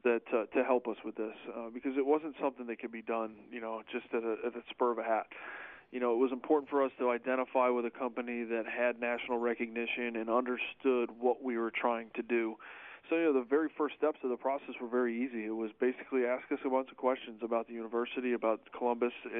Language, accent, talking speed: English, American, 240 wpm